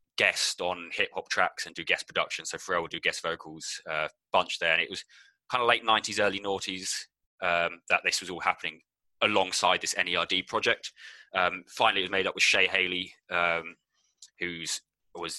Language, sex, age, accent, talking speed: English, male, 20-39, British, 190 wpm